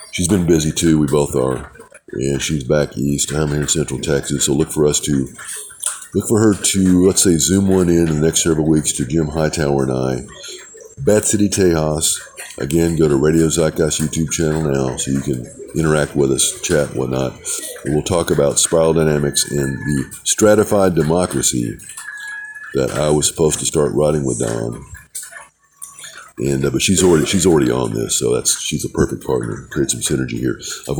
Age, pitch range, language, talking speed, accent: 50-69, 70-95 Hz, English, 195 wpm, American